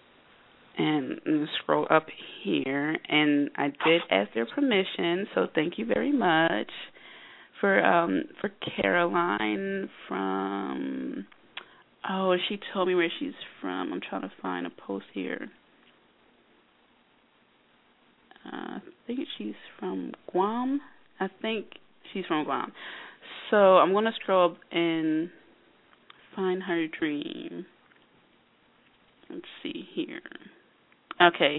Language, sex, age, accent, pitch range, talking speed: English, female, 20-39, American, 150-190 Hz, 115 wpm